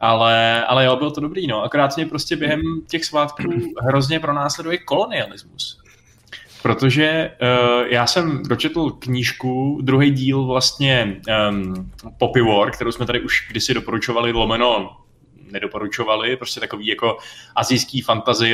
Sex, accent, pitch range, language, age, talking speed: male, native, 115-135 Hz, Czech, 20-39, 130 wpm